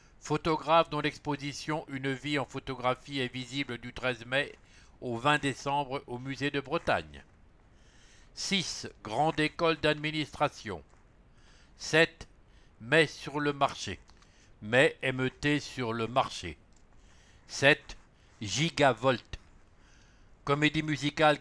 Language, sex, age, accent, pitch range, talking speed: English, male, 60-79, French, 115-150 Hz, 110 wpm